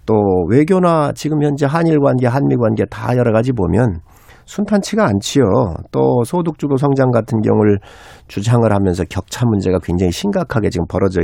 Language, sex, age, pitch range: Korean, male, 50-69, 105-155 Hz